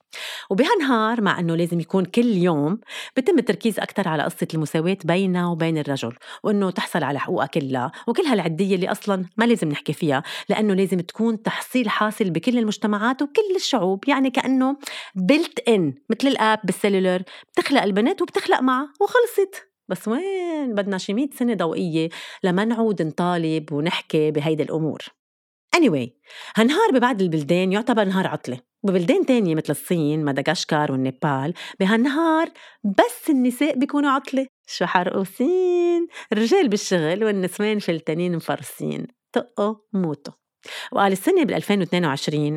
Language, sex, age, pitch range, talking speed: Arabic, female, 30-49, 175-245 Hz, 135 wpm